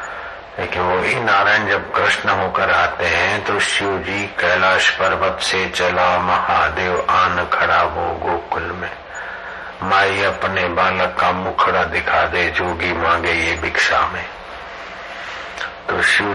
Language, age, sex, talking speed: Hindi, 60-79, male, 115 wpm